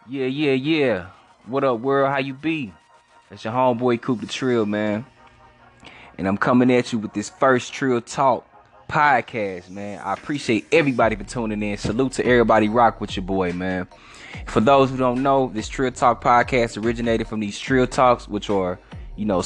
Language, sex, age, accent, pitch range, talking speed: English, male, 10-29, American, 110-125 Hz, 185 wpm